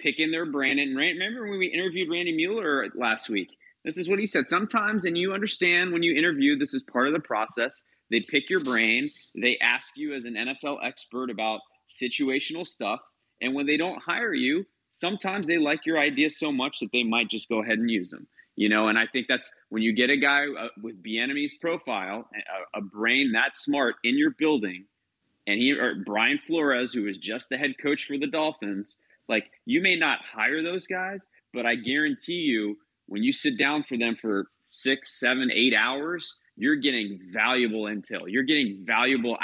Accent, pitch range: American, 115-155 Hz